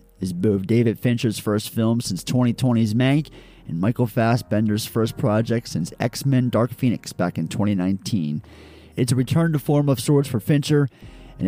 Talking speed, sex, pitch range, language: 160 wpm, male, 110-135 Hz, English